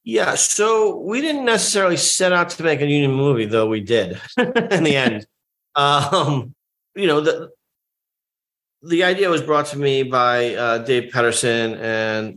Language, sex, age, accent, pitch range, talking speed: English, male, 40-59, American, 110-125 Hz, 160 wpm